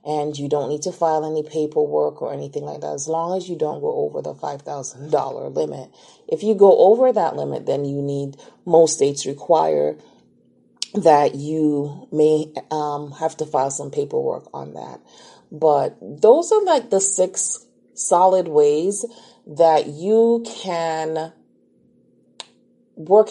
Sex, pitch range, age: female, 155-210 Hz, 30-49